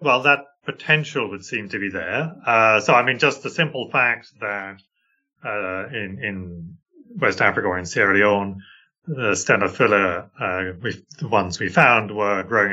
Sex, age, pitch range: male, 30-49, 95-115 Hz